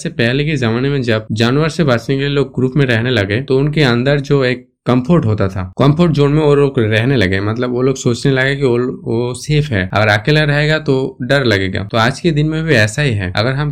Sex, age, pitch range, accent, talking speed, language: male, 20-39, 110-145 Hz, native, 250 wpm, Hindi